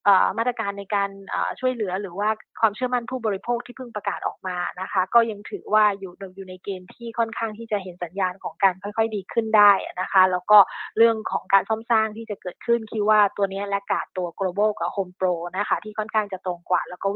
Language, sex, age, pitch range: Thai, female, 20-39, 190-220 Hz